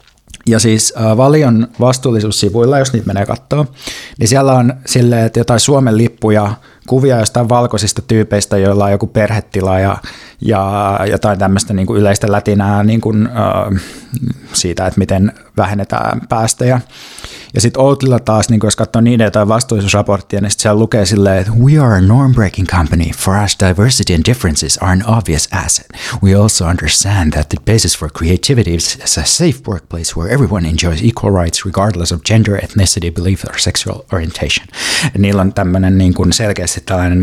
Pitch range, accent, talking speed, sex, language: 95-120 Hz, native, 155 wpm, male, Finnish